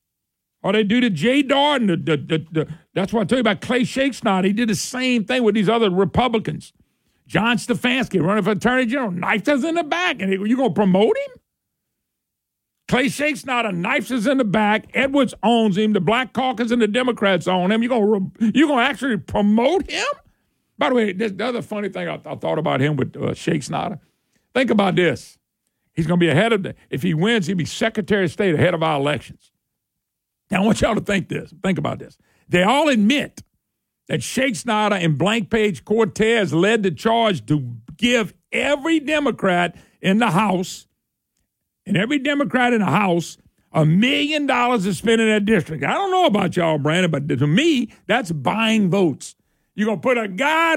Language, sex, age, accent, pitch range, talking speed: English, male, 50-69, American, 190-250 Hz, 195 wpm